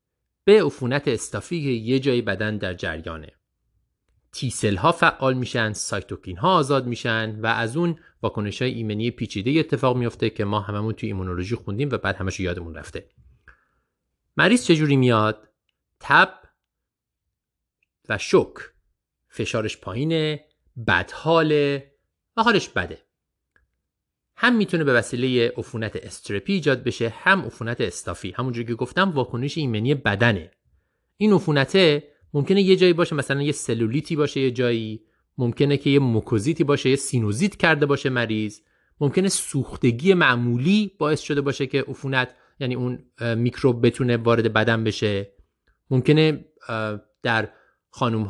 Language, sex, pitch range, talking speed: Persian, male, 110-150 Hz, 130 wpm